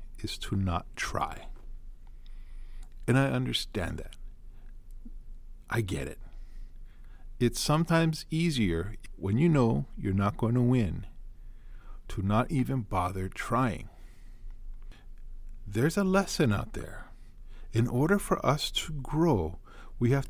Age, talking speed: 50-69, 120 wpm